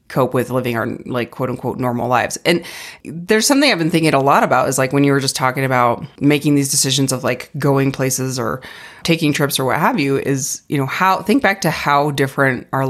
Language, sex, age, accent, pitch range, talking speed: English, female, 30-49, American, 125-145 Hz, 235 wpm